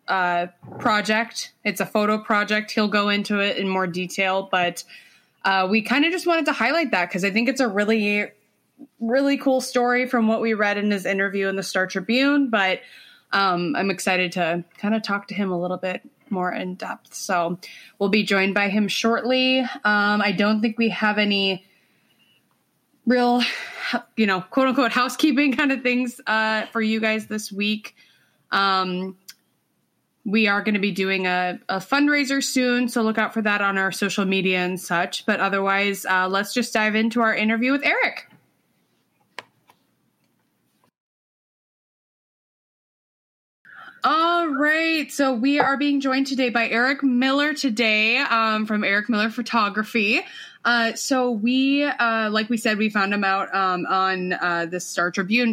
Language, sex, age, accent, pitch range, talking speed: English, female, 20-39, American, 195-245 Hz, 165 wpm